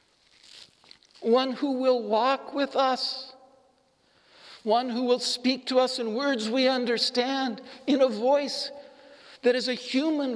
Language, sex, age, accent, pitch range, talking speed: English, male, 60-79, American, 215-275 Hz, 135 wpm